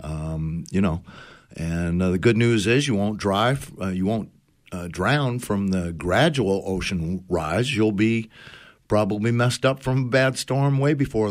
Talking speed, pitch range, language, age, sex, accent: 175 wpm, 95-115 Hz, English, 60-79, male, American